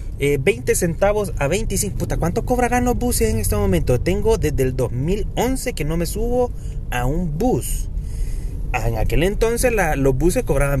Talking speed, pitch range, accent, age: 170 wpm, 125-180 Hz, Mexican, 30-49